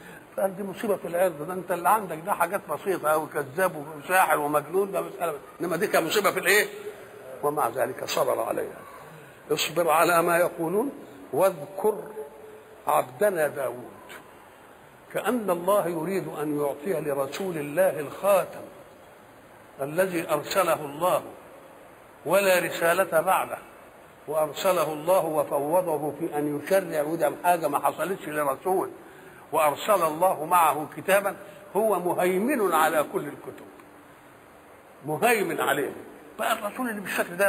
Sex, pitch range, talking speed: male, 155-205 Hz, 120 wpm